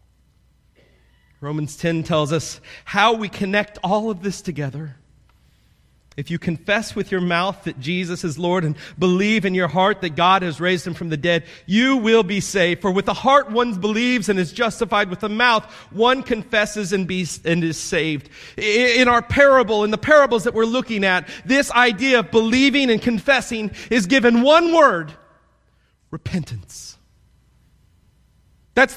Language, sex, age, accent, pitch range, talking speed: English, male, 40-59, American, 175-285 Hz, 160 wpm